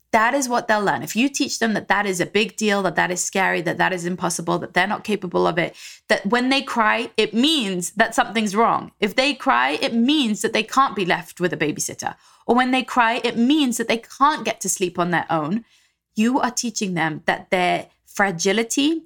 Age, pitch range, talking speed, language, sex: 20-39, 185-255 Hz, 230 wpm, English, female